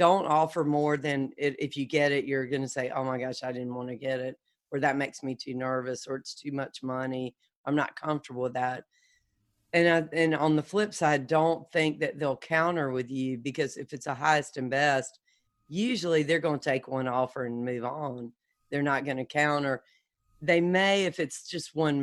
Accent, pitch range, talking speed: American, 135-160 Hz, 220 wpm